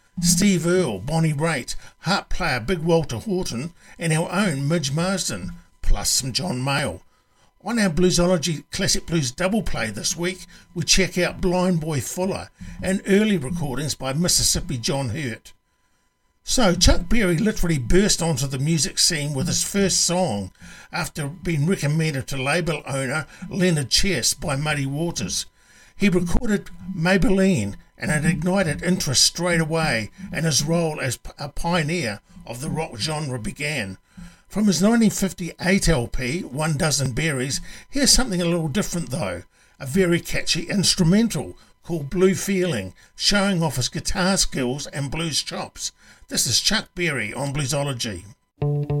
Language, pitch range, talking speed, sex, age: English, 140-185 Hz, 145 wpm, male, 60-79